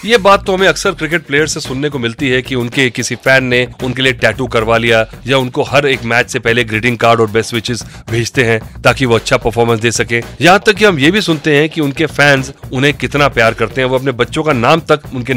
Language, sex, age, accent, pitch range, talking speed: Hindi, male, 30-49, native, 125-165 Hz, 255 wpm